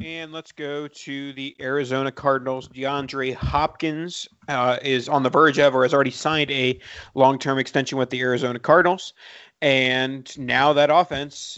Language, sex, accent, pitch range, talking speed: English, male, American, 130-155 Hz, 155 wpm